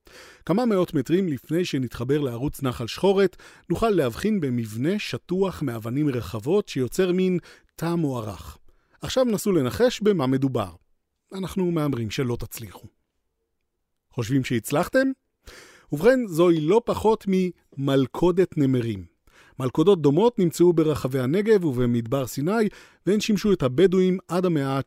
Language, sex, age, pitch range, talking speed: Hebrew, male, 40-59, 125-180 Hz, 115 wpm